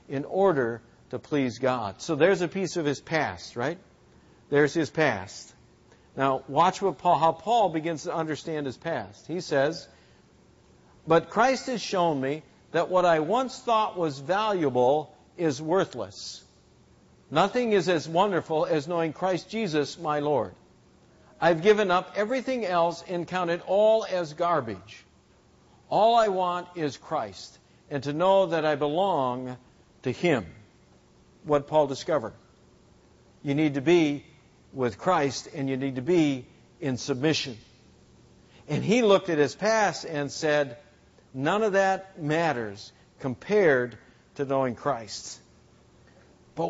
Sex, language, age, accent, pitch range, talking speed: male, English, 50-69, American, 135-190 Hz, 140 wpm